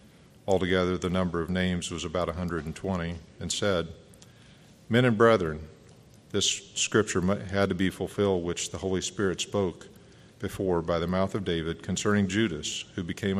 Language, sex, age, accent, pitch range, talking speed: English, male, 50-69, American, 85-100 Hz, 150 wpm